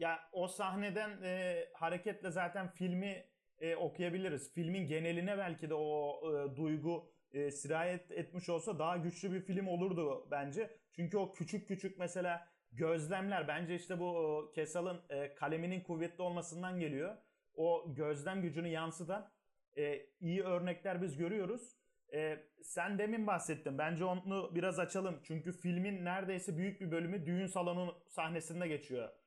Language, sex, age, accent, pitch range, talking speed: Turkish, male, 30-49, native, 165-195 Hz, 140 wpm